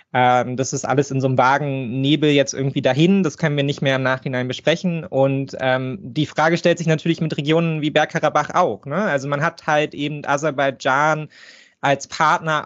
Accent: German